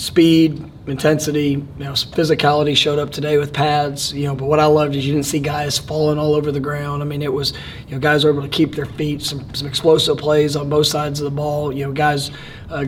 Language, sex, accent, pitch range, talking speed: English, male, American, 140-150 Hz, 245 wpm